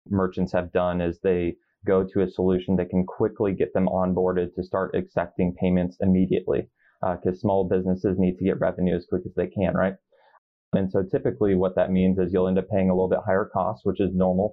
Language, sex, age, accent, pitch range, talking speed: English, male, 20-39, American, 90-95 Hz, 220 wpm